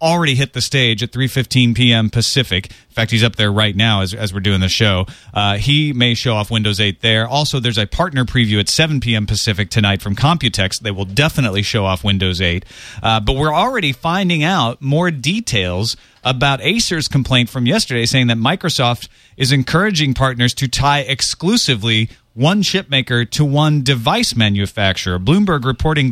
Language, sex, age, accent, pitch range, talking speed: English, male, 30-49, American, 110-150 Hz, 180 wpm